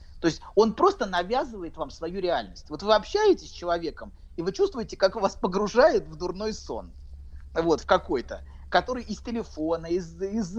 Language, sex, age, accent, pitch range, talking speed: Russian, male, 30-49, native, 135-225 Hz, 170 wpm